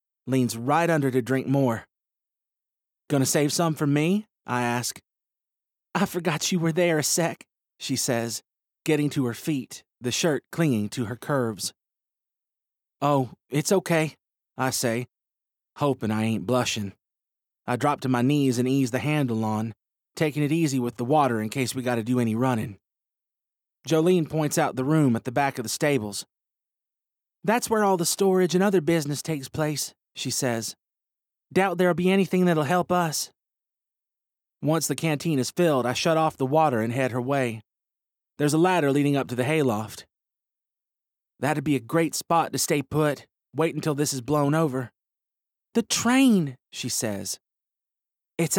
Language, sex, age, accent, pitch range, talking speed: English, male, 30-49, American, 125-165 Hz, 165 wpm